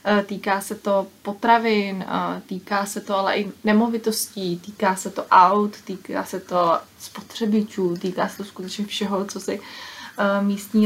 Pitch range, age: 200-215 Hz, 20-39